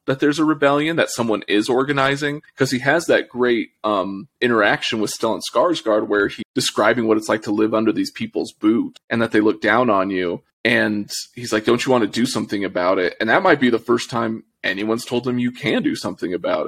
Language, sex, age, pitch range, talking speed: English, male, 20-39, 105-130 Hz, 225 wpm